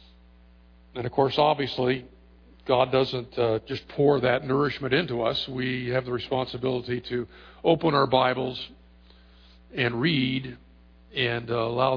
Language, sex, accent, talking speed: English, male, American, 130 wpm